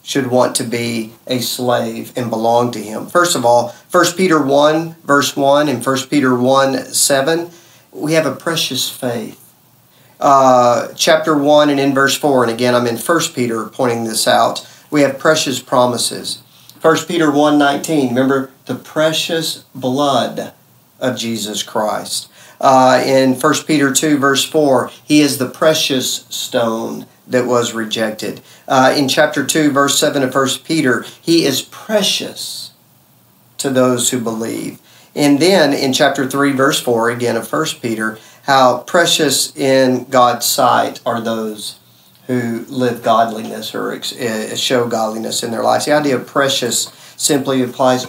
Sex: male